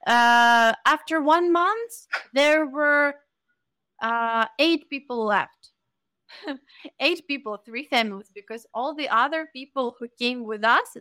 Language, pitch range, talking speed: English, 215-280 Hz, 125 wpm